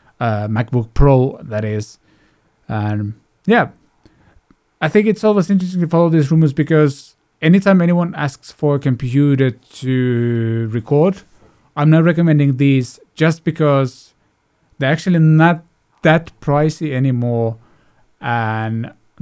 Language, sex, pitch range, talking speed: English, male, 115-150 Hz, 120 wpm